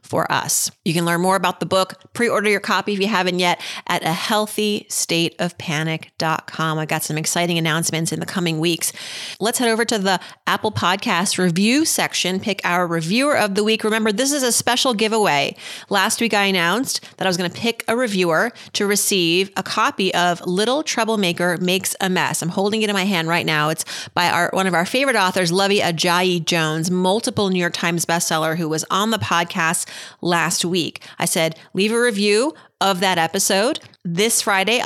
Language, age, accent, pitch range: English, 30-49, American, 170-215 Hz